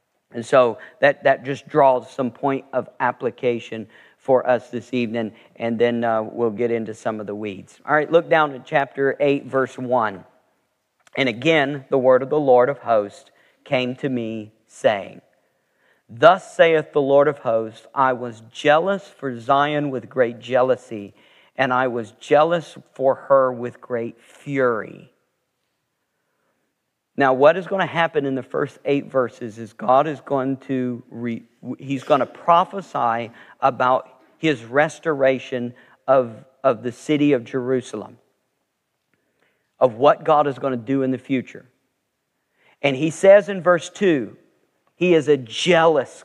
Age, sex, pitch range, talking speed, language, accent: 40-59, male, 125-150 Hz, 155 wpm, English, American